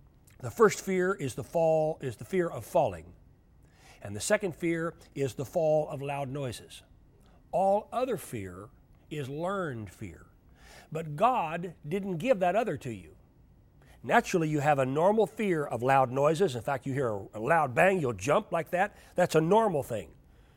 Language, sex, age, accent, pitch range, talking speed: English, male, 60-79, American, 145-225 Hz, 170 wpm